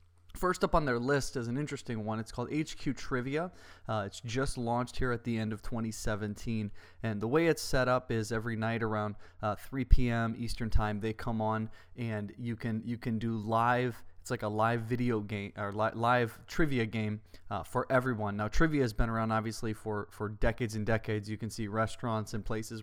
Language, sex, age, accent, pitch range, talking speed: English, male, 20-39, American, 105-120 Hz, 210 wpm